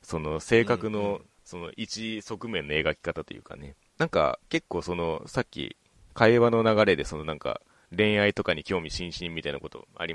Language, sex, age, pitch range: Japanese, male, 30-49, 85-120 Hz